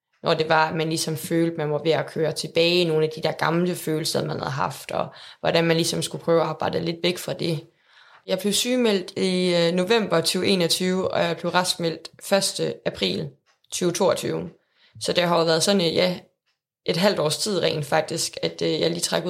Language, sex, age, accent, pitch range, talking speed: Danish, female, 20-39, native, 165-185 Hz, 210 wpm